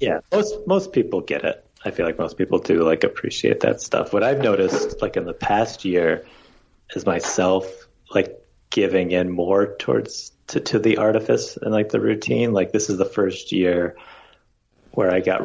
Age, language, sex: 30-49, English, male